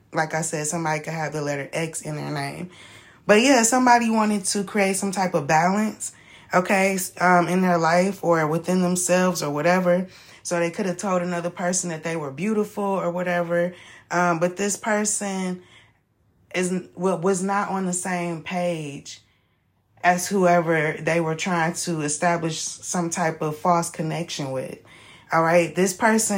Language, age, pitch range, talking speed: English, 20-39, 165-200 Hz, 165 wpm